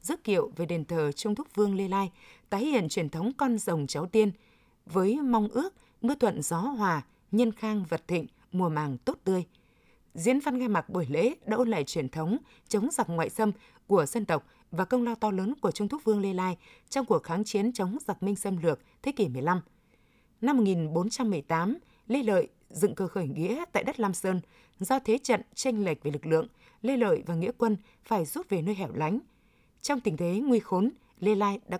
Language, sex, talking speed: Vietnamese, female, 210 wpm